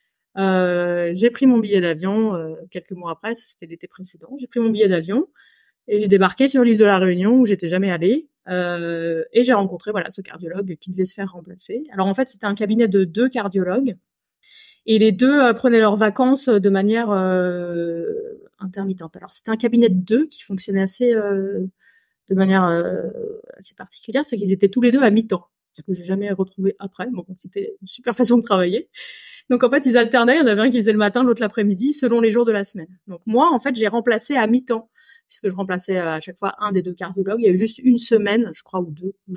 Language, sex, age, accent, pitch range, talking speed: French, female, 20-39, French, 185-240 Hz, 230 wpm